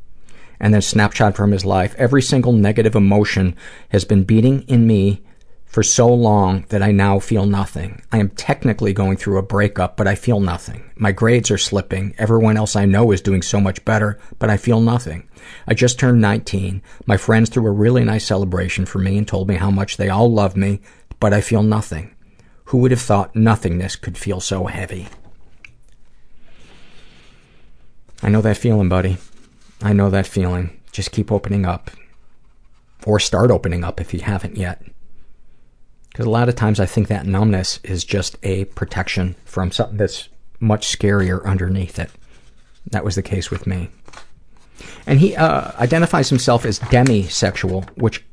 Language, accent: English, American